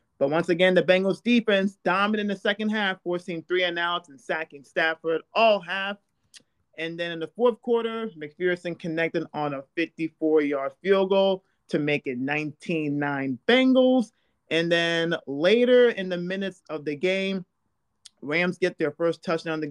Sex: male